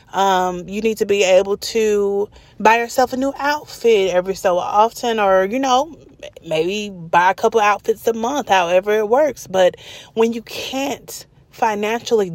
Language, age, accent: English, 30-49, American